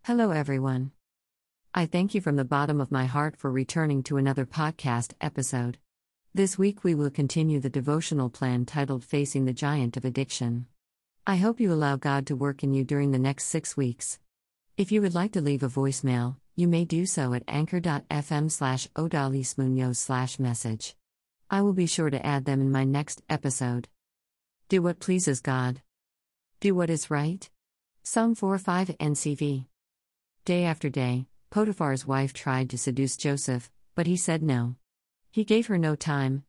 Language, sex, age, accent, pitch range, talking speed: English, female, 50-69, American, 130-170 Hz, 170 wpm